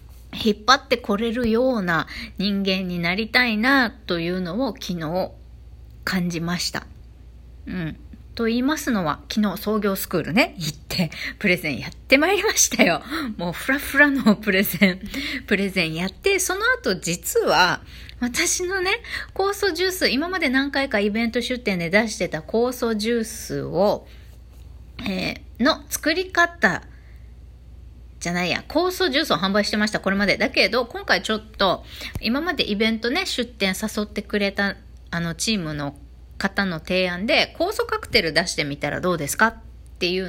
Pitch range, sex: 180-260 Hz, female